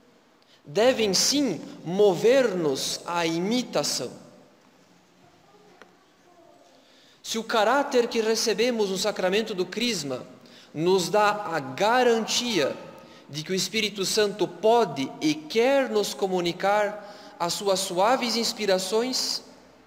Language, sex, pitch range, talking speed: Portuguese, male, 175-230 Hz, 95 wpm